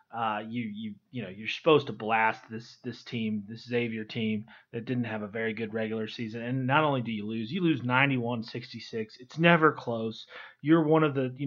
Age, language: 30-49, English